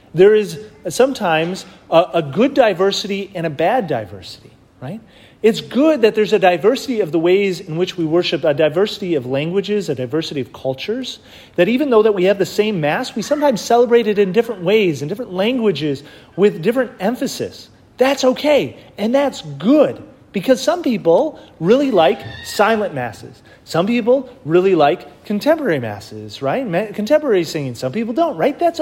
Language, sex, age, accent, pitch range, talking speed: English, male, 30-49, American, 155-235 Hz, 170 wpm